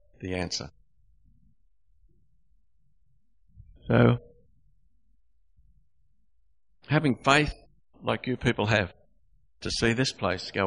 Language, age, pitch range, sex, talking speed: English, 60-79, 95-120 Hz, male, 80 wpm